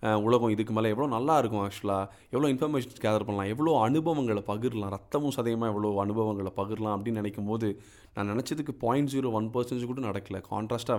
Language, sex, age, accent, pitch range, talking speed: Tamil, male, 30-49, native, 105-130 Hz, 165 wpm